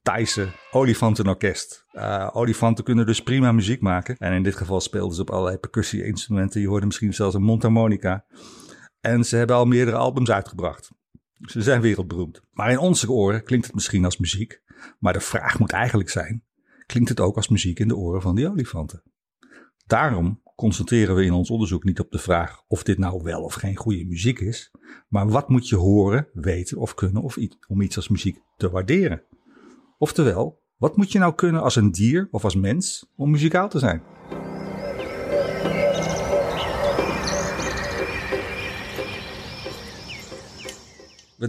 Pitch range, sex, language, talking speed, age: 95-125 Hz, male, Dutch, 160 wpm, 50-69